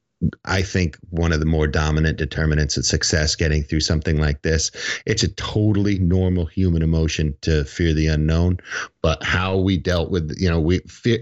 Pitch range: 85-105 Hz